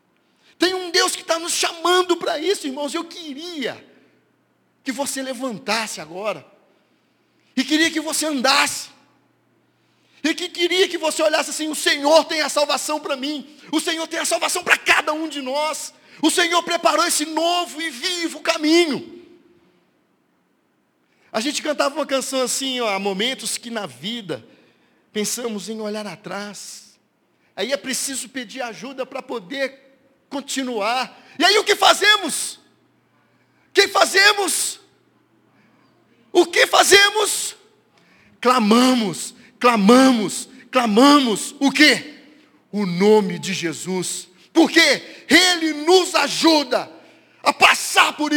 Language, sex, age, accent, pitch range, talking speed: Portuguese, male, 50-69, Brazilian, 250-335 Hz, 130 wpm